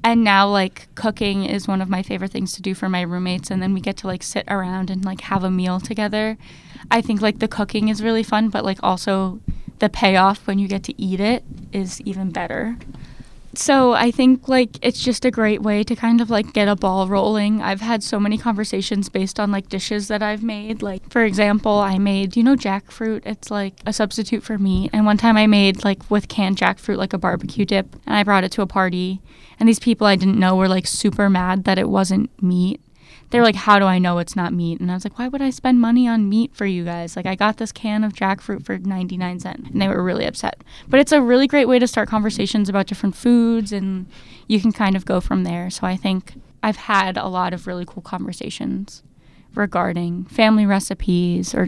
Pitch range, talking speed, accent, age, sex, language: 190-220 Hz, 235 wpm, American, 10-29, female, English